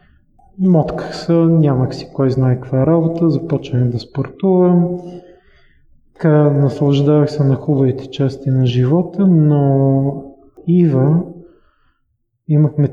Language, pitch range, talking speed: Bulgarian, 130-165 Hz, 105 wpm